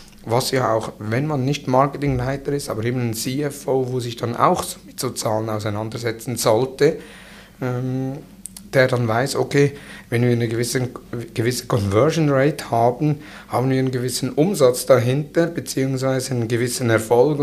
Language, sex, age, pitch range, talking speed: German, male, 60-79, 120-135 Hz, 150 wpm